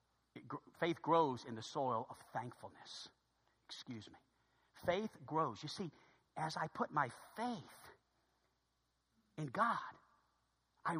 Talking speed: 115 wpm